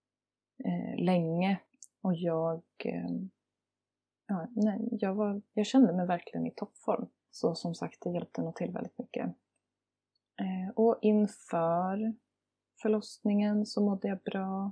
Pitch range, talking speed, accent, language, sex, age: 170-220 Hz, 120 wpm, native, Swedish, female, 30-49